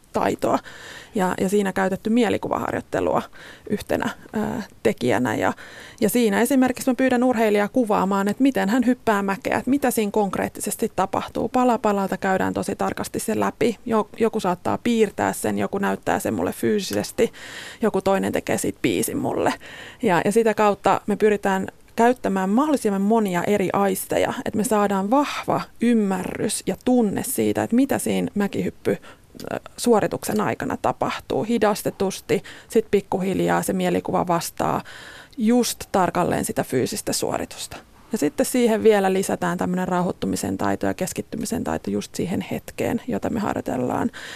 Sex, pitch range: female, 190-235 Hz